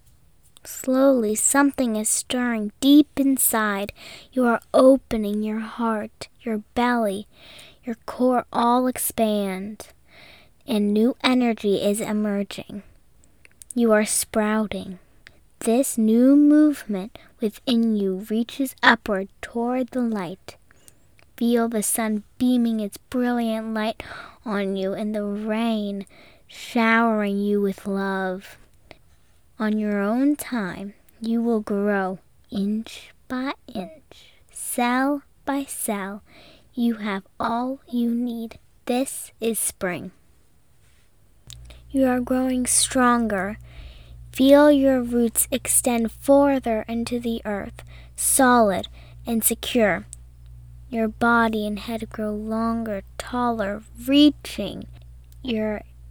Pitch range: 205-245 Hz